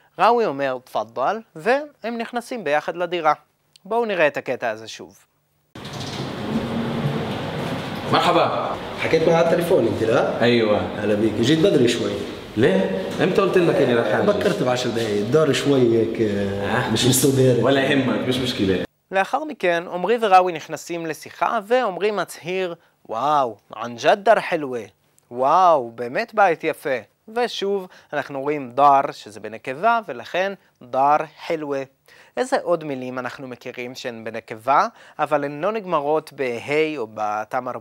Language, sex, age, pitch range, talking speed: Hebrew, male, 20-39, 125-175 Hz, 125 wpm